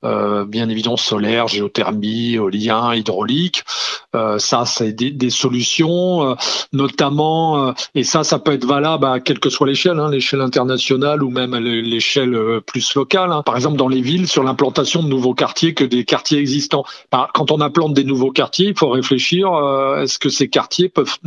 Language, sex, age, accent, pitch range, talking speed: French, male, 40-59, French, 125-155 Hz, 190 wpm